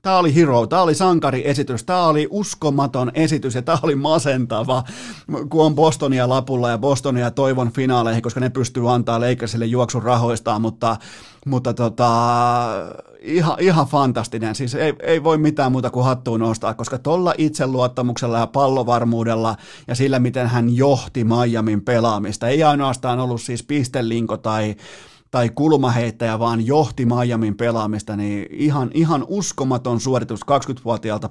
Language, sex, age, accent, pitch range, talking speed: Finnish, male, 30-49, native, 115-145 Hz, 140 wpm